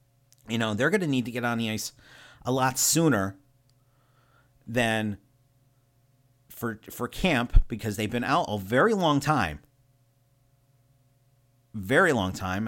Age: 40-59